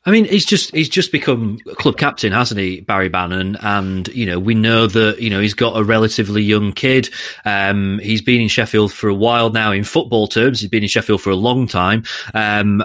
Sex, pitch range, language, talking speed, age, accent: male, 100-125 Hz, English, 230 wpm, 30-49, British